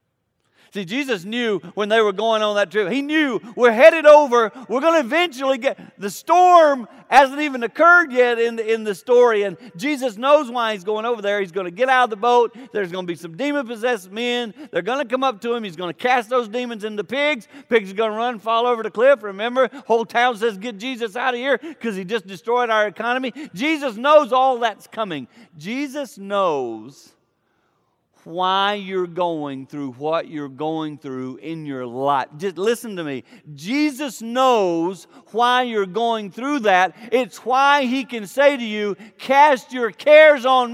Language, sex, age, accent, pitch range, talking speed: English, male, 50-69, American, 195-265 Hz, 195 wpm